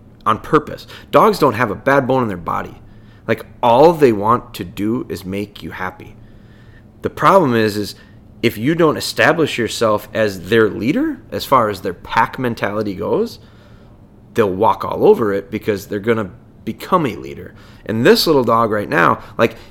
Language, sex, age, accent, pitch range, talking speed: English, male, 30-49, American, 105-135 Hz, 175 wpm